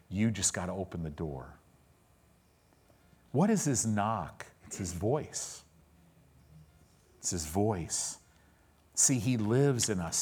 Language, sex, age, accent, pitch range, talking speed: English, male, 50-69, American, 90-130 Hz, 130 wpm